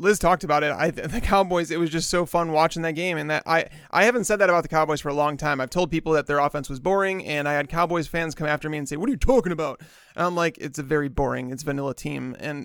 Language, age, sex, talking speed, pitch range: English, 30-49, male, 300 wpm, 150-175 Hz